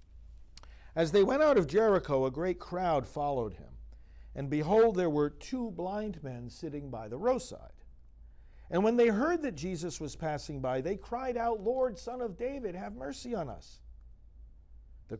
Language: English